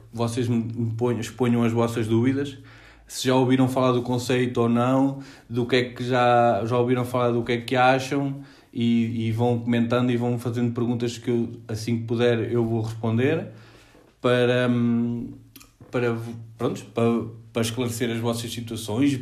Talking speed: 145 wpm